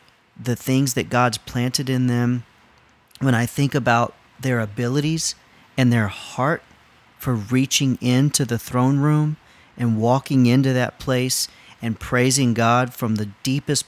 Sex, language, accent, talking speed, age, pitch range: male, English, American, 145 wpm, 40-59, 115-130 Hz